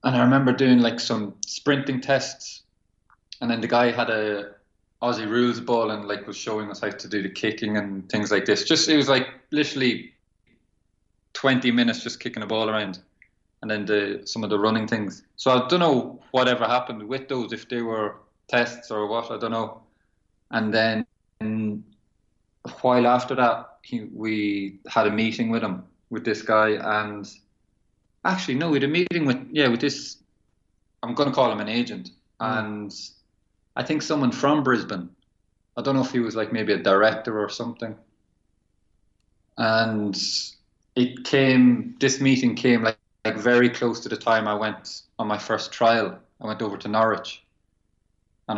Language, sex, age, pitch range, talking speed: English, male, 20-39, 105-125 Hz, 180 wpm